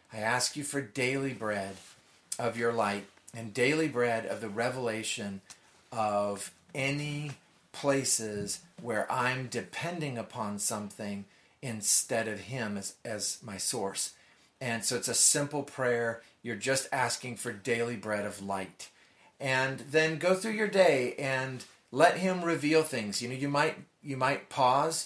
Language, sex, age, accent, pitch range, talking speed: English, male, 40-59, American, 110-140 Hz, 150 wpm